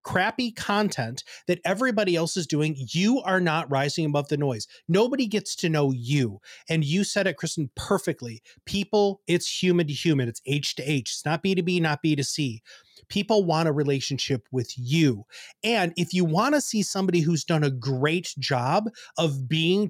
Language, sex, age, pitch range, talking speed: English, male, 30-49, 140-185 Hz, 190 wpm